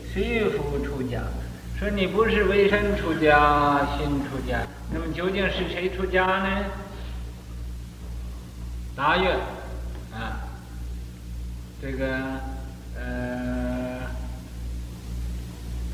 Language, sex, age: Chinese, male, 60-79